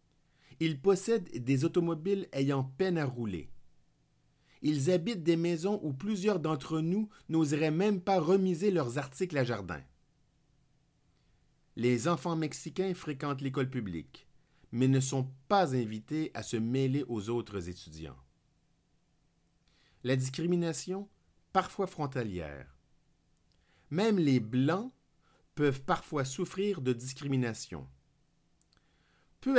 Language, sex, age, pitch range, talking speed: French, male, 50-69, 115-170 Hz, 110 wpm